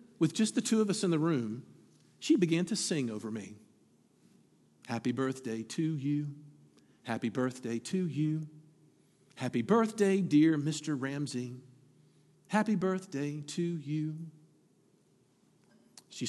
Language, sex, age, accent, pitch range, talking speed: English, male, 50-69, American, 140-195 Hz, 120 wpm